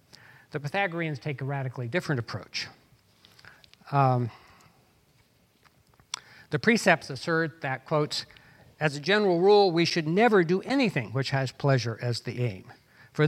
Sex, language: male, English